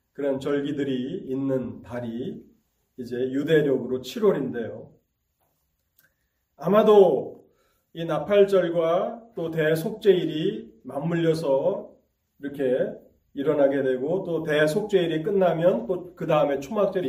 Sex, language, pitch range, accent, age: male, Korean, 130-165 Hz, native, 30-49